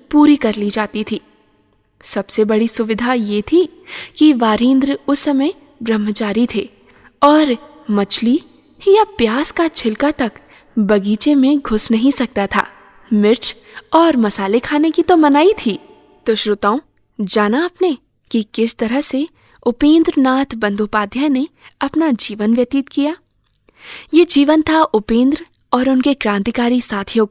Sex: female